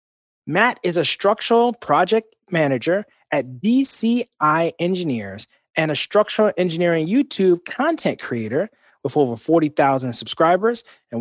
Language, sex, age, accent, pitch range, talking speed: English, male, 30-49, American, 145-210 Hz, 110 wpm